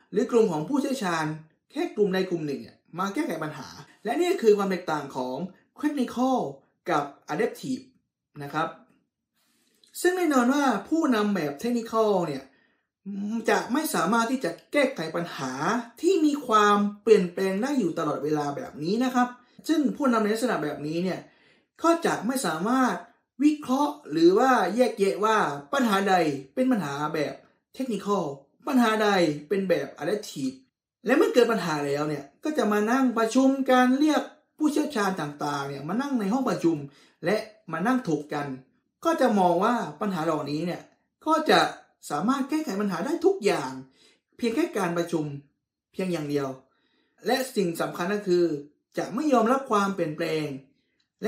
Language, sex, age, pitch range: Thai, male, 20-39, 160-260 Hz